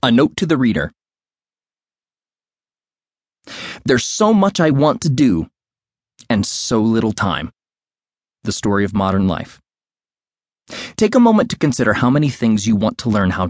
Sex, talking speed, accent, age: male, 150 wpm, American, 30-49